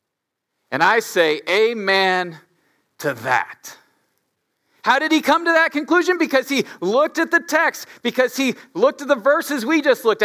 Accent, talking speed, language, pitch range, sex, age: American, 165 wpm, English, 190-260 Hz, male, 40-59